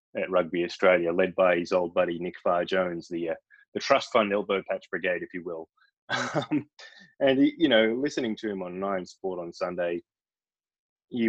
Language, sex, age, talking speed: English, male, 20-39, 185 wpm